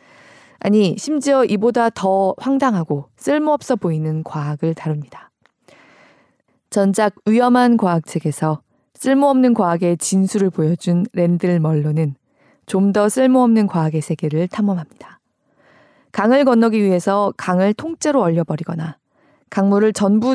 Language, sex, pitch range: Korean, female, 160-235 Hz